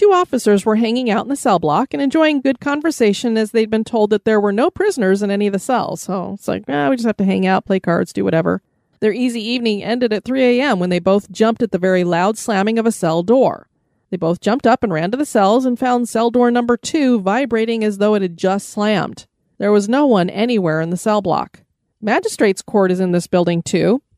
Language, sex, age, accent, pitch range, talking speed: English, female, 30-49, American, 185-240 Hz, 245 wpm